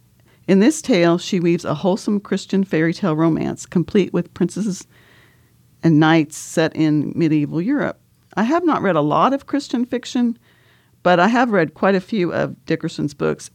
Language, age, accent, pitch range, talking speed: English, 50-69, American, 155-195 Hz, 175 wpm